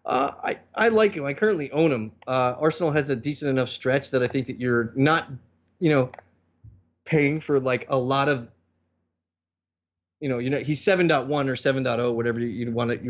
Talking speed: 195 wpm